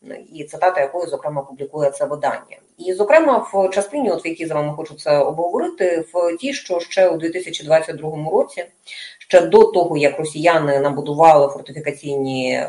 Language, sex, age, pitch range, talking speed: Russian, female, 30-49, 145-190 Hz, 160 wpm